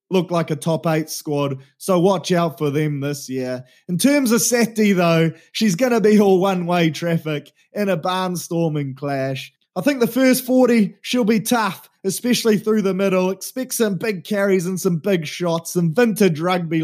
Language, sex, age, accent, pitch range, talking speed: English, male, 20-39, Australian, 155-200 Hz, 185 wpm